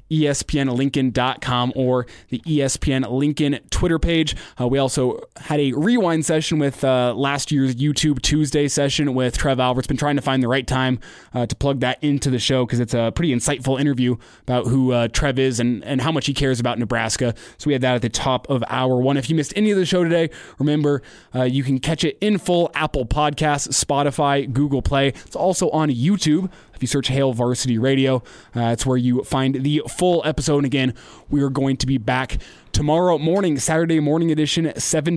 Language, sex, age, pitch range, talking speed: English, male, 20-39, 125-150 Hz, 205 wpm